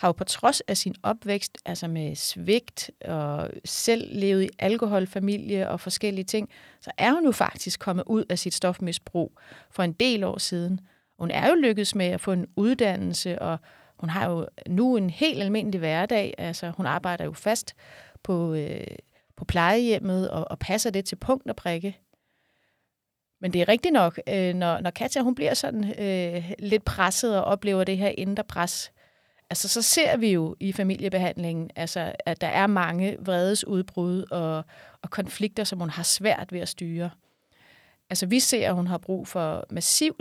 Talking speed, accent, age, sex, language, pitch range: 180 wpm, native, 30-49, female, Danish, 175-205 Hz